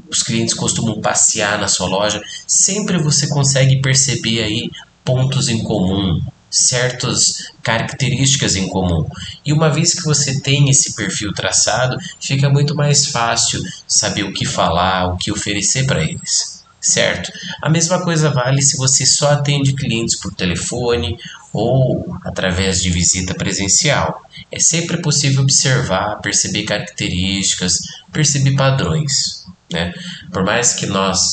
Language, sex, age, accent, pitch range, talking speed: Portuguese, male, 20-39, Brazilian, 95-145 Hz, 135 wpm